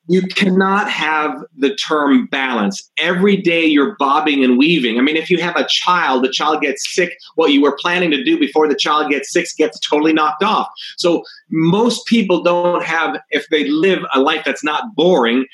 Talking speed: 195 wpm